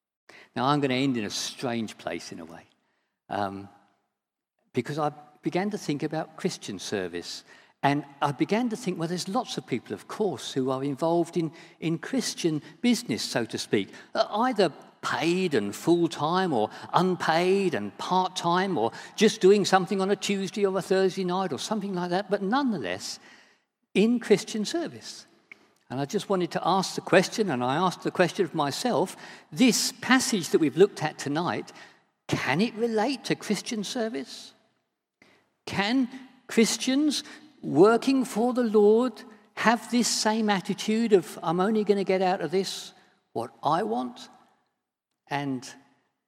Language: English